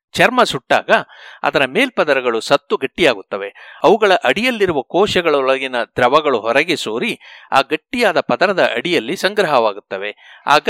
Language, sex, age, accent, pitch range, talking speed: Kannada, male, 60-79, native, 130-215 Hz, 100 wpm